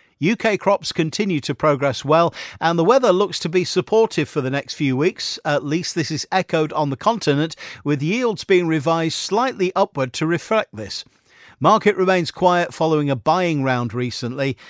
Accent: British